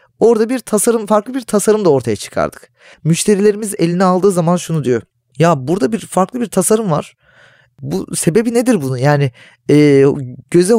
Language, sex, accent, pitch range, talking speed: Turkish, male, native, 150-205 Hz, 160 wpm